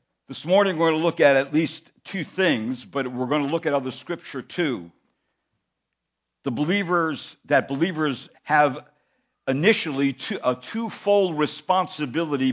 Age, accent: 60-79, American